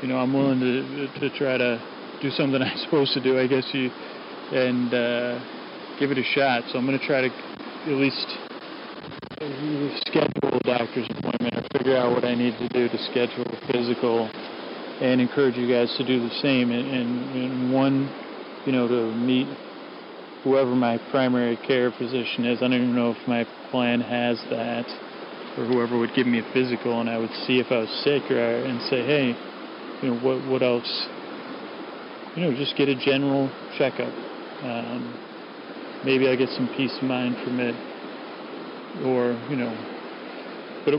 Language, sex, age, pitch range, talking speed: English, male, 30-49, 120-130 Hz, 180 wpm